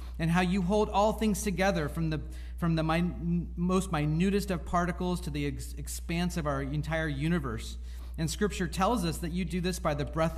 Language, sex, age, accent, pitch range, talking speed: English, male, 40-59, American, 120-170 Hz, 200 wpm